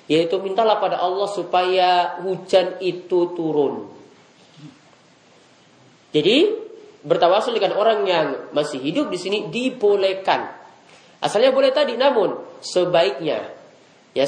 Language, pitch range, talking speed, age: Indonesian, 160-225 Hz, 100 wpm, 30-49